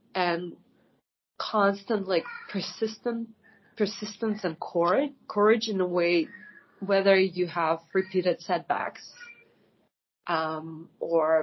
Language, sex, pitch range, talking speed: English, female, 170-210 Hz, 95 wpm